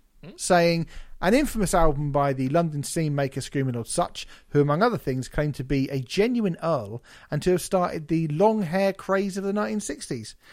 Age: 40-59